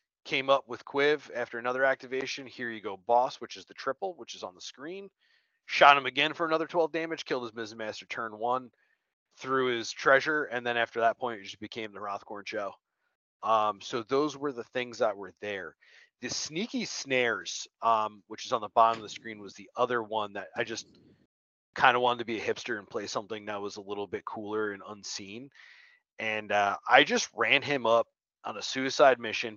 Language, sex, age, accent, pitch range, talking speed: English, male, 30-49, American, 105-135 Hz, 210 wpm